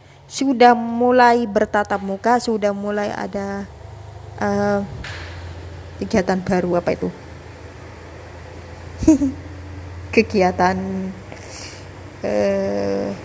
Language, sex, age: Indonesian, female, 20-39